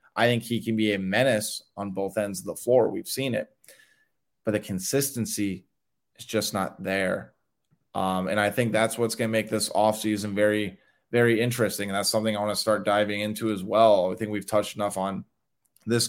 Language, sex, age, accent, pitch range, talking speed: English, male, 20-39, American, 100-115 Hz, 205 wpm